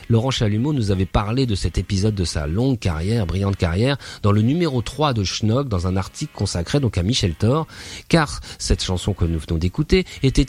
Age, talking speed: 30-49, 205 wpm